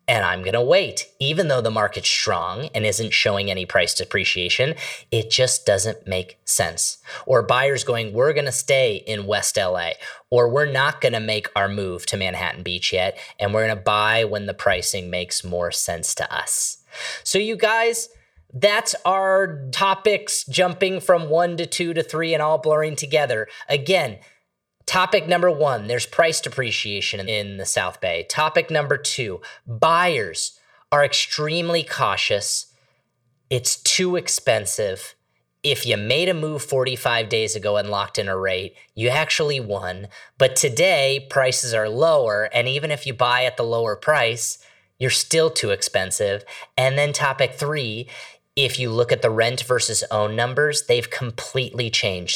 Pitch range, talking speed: 105-150 Hz, 165 wpm